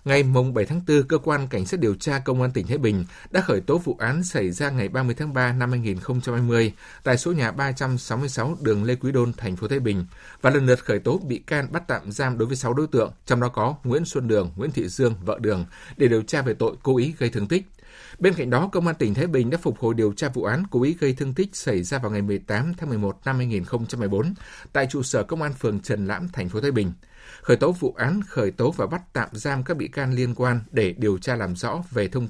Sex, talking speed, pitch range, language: male, 260 wpm, 110-145 Hz, Vietnamese